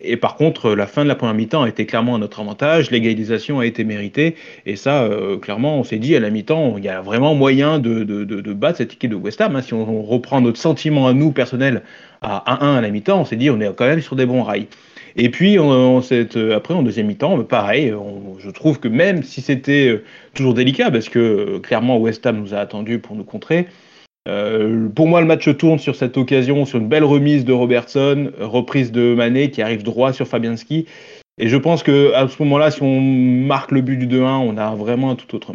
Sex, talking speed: male, 245 wpm